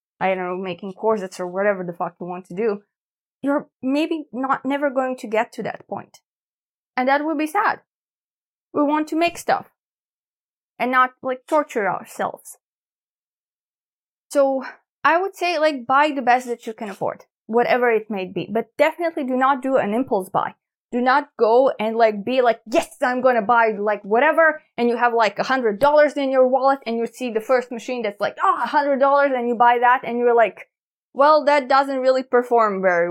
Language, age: English, 20-39